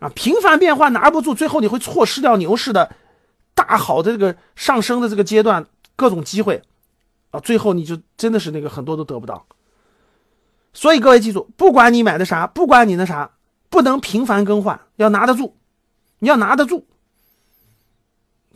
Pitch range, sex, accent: 195-270 Hz, male, native